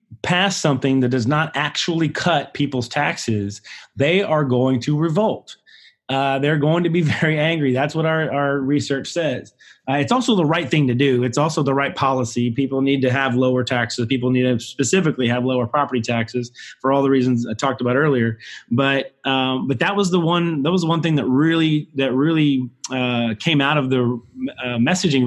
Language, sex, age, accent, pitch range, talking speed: English, male, 30-49, American, 125-150 Hz, 200 wpm